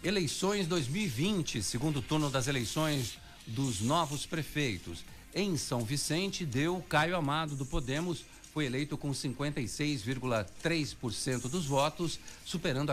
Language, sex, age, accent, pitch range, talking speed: Portuguese, male, 60-79, Brazilian, 115-155 Hz, 110 wpm